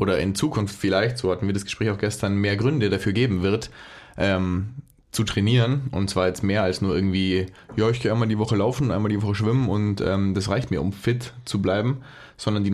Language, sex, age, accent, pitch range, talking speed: German, male, 20-39, German, 95-120 Hz, 225 wpm